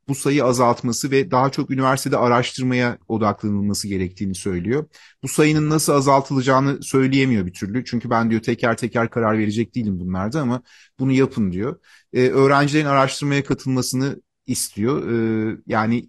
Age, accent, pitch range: 40-59, native, 115-155 Hz